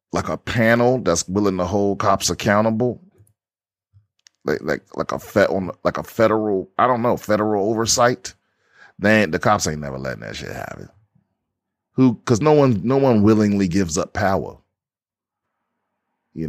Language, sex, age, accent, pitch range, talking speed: English, male, 30-49, American, 95-120 Hz, 155 wpm